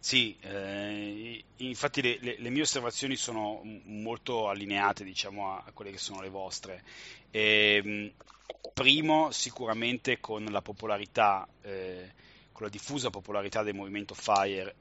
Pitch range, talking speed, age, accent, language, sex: 100-115 Hz, 140 wpm, 30-49, native, Italian, male